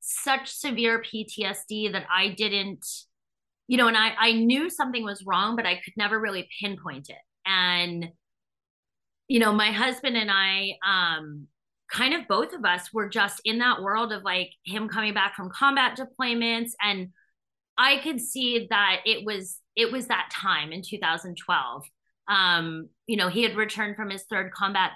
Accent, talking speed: American, 170 wpm